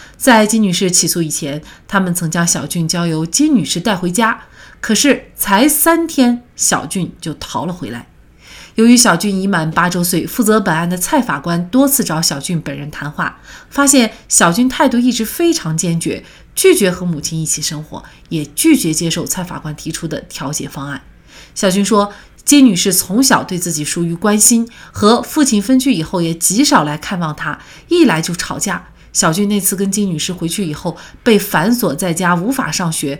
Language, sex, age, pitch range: Chinese, female, 30-49, 165-230 Hz